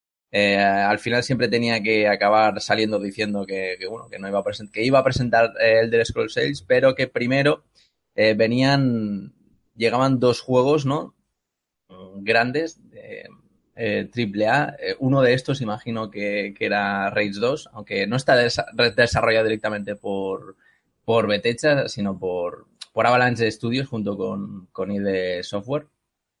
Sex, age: male, 20-39